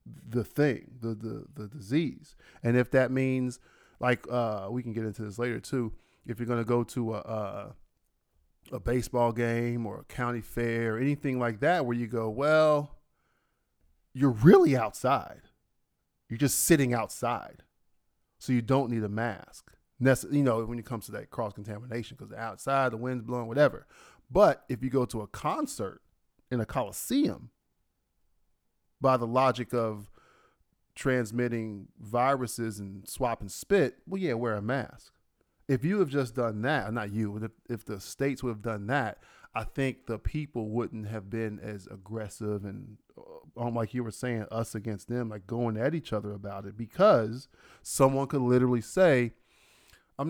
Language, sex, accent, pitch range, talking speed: English, male, American, 110-130 Hz, 165 wpm